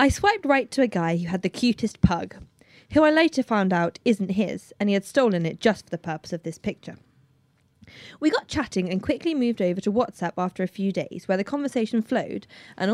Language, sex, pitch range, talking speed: English, female, 180-255 Hz, 225 wpm